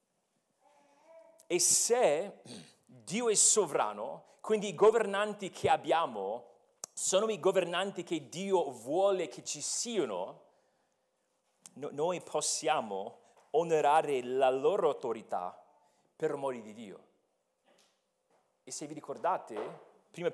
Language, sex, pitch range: Italian, male, 170-275 Hz